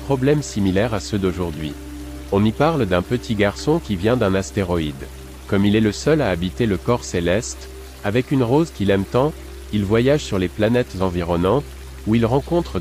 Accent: French